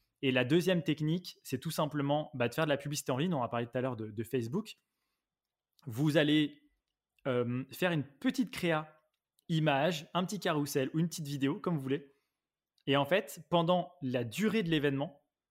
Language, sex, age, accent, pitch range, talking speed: French, male, 20-39, French, 130-160 Hz, 195 wpm